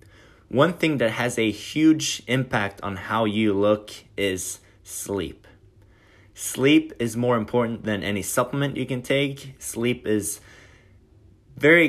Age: 20-39